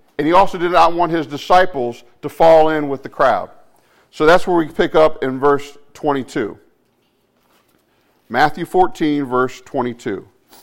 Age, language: 50-69, English